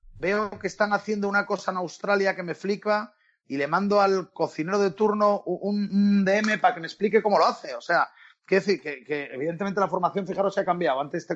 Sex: male